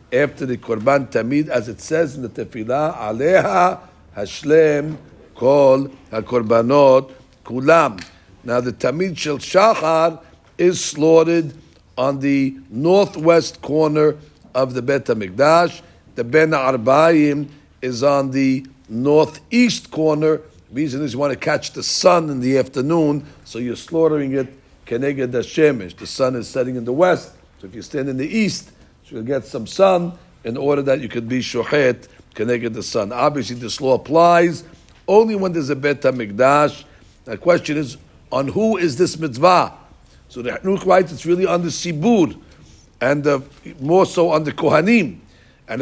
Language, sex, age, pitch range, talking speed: English, male, 60-79, 130-170 Hz, 155 wpm